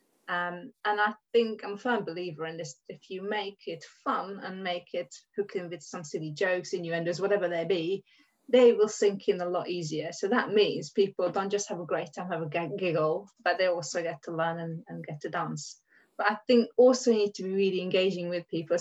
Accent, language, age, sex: British, English, 20-39, female